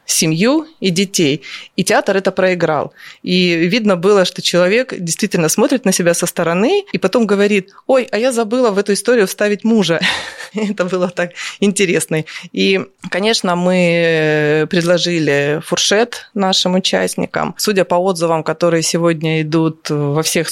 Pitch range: 160-190 Hz